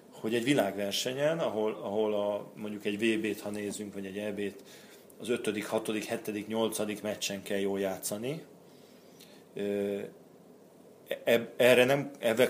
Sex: male